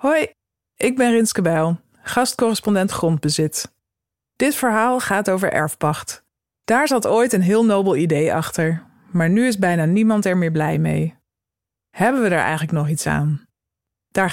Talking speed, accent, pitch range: 155 wpm, Dutch, 150-220 Hz